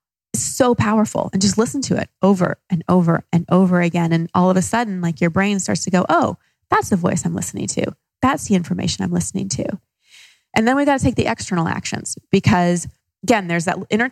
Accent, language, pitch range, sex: American, English, 170-190 Hz, female